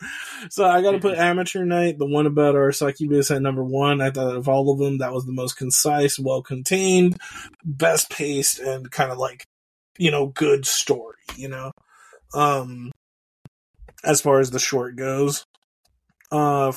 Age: 20-39